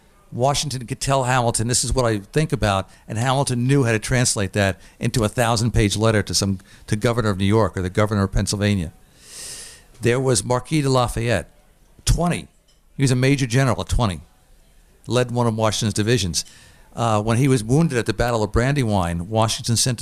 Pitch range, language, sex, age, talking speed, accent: 110-140 Hz, English, male, 50-69, 190 wpm, American